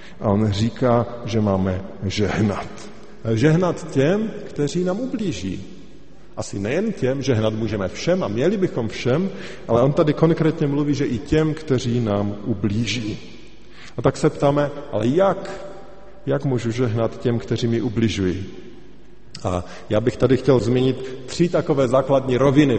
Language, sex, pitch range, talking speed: Slovak, male, 115-145 Hz, 145 wpm